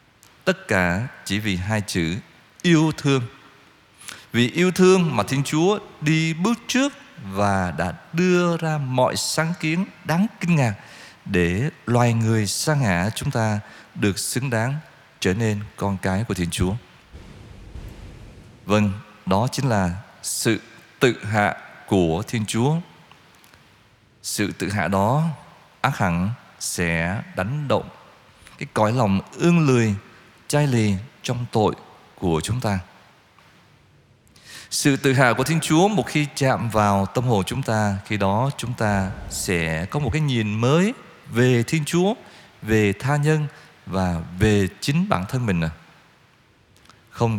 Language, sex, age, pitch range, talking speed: Vietnamese, male, 20-39, 100-145 Hz, 140 wpm